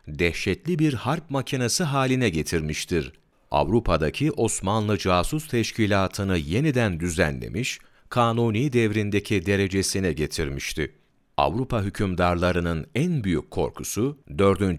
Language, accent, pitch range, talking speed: Turkish, native, 85-120 Hz, 90 wpm